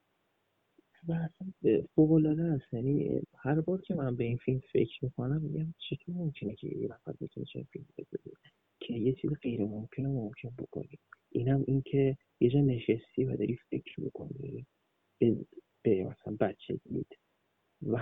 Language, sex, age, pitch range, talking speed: Persian, male, 30-49, 120-155 Hz, 155 wpm